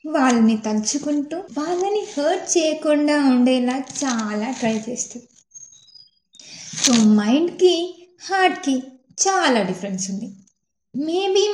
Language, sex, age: Telugu, female, 20-39